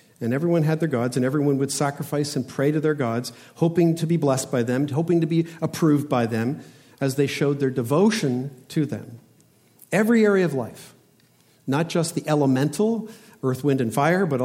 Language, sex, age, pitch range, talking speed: English, male, 50-69, 125-165 Hz, 190 wpm